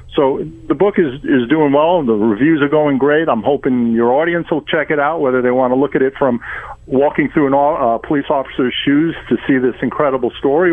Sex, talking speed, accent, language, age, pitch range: male, 230 wpm, American, English, 50-69, 130-160 Hz